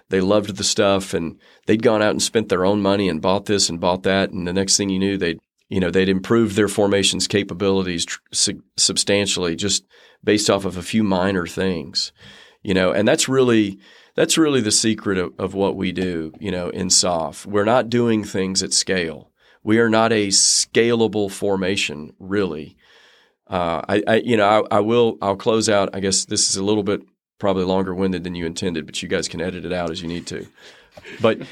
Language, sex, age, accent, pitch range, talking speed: English, male, 40-59, American, 95-105 Hz, 210 wpm